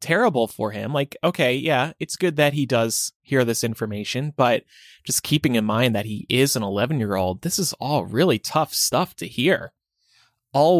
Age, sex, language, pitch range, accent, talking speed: 20-39, male, English, 115-160 Hz, American, 195 wpm